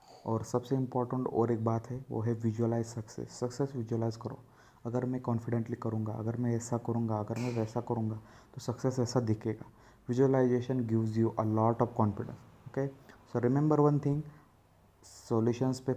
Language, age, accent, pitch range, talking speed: Hindi, 20-39, native, 110-125 Hz, 165 wpm